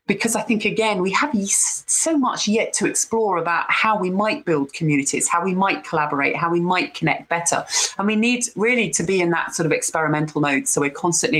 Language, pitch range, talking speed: English, 145-185 Hz, 215 wpm